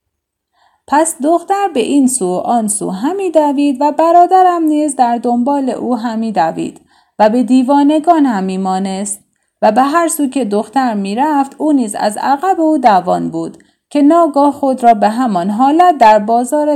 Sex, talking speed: female, 150 wpm